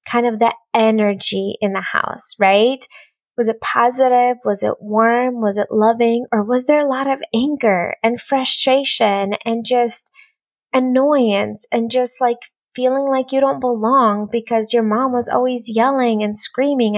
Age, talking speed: 20-39, 160 wpm